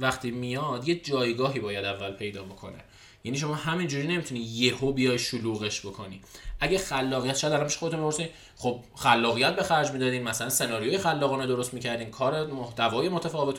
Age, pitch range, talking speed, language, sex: 20-39, 120-170 Hz, 155 wpm, Persian, male